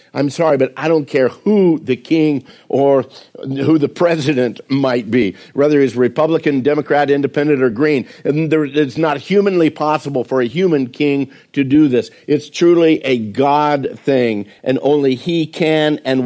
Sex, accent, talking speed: male, American, 160 wpm